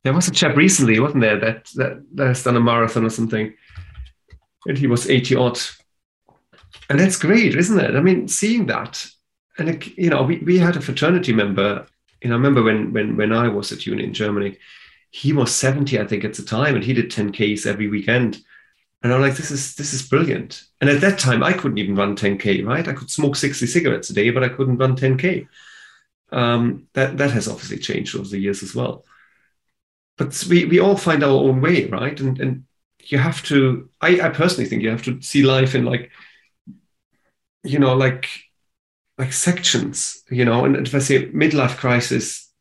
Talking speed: 205 wpm